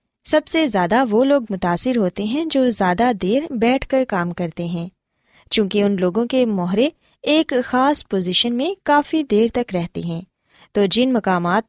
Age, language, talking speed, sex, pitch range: 20-39, Urdu, 170 wpm, female, 195-270 Hz